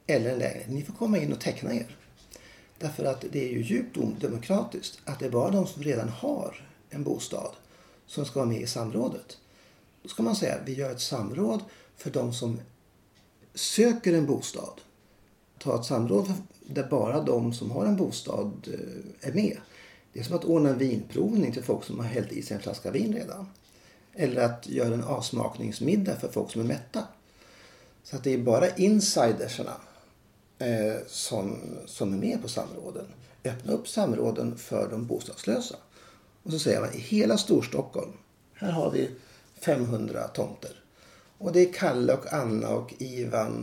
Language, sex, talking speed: Swedish, male, 170 wpm